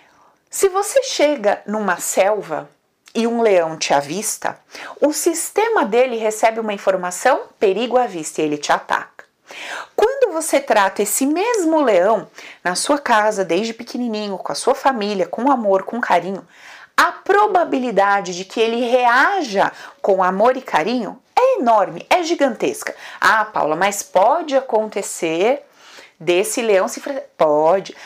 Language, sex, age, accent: Portuguese, female, 30-49, Brazilian